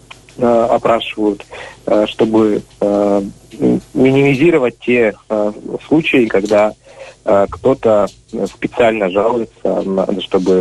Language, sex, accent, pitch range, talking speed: Russian, male, native, 100-125 Hz, 55 wpm